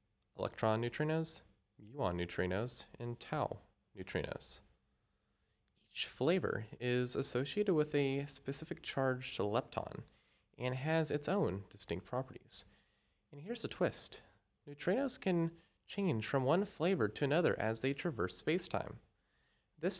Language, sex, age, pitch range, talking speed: English, male, 30-49, 110-160 Hz, 115 wpm